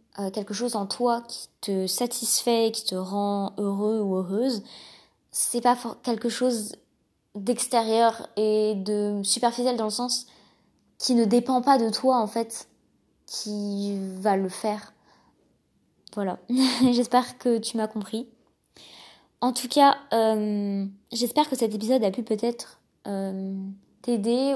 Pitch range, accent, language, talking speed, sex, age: 205-245 Hz, French, French, 135 wpm, female, 20-39